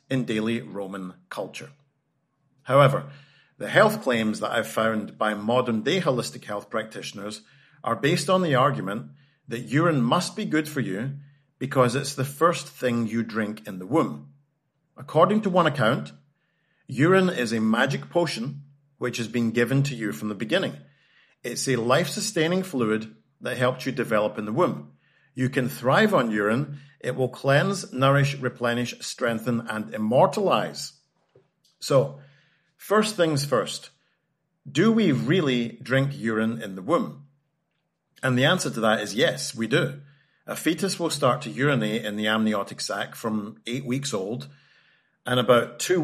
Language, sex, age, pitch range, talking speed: English, male, 40-59, 115-150 Hz, 155 wpm